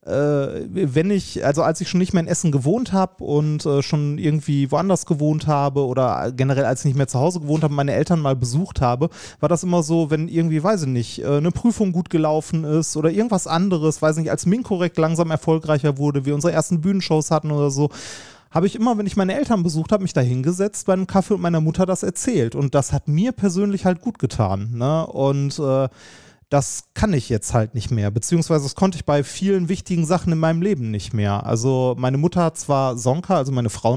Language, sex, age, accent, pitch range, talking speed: German, male, 30-49, German, 130-170 Hz, 225 wpm